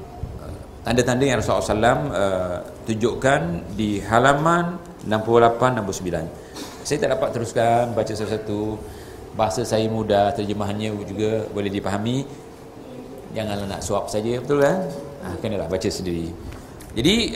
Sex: male